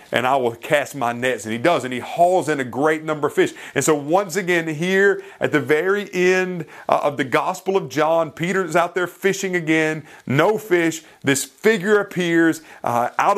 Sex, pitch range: male, 145-195 Hz